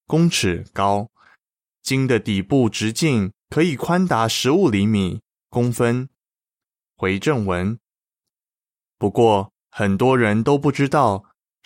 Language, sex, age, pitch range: Chinese, male, 20-39, 100-145 Hz